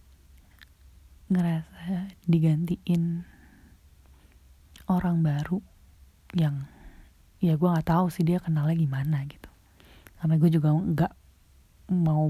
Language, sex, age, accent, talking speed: Indonesian, female, 20-39, native, 95 wpm